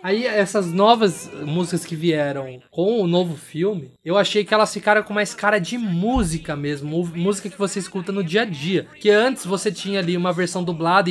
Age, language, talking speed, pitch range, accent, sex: 20-39, Portuguese, 200 wpm, 155-200 Hz, Brazilian, male